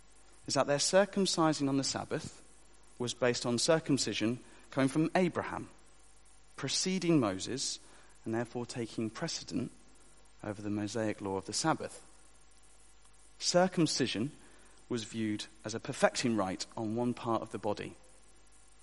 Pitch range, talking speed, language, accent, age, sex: 115-160 Hz, 130 wpm, English, British, 40-59, male